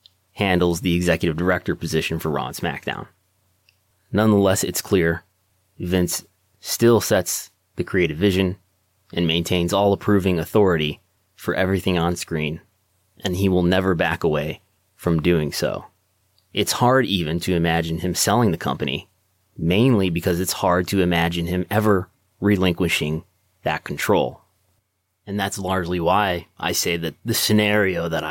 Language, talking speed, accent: English, 140 wpm, American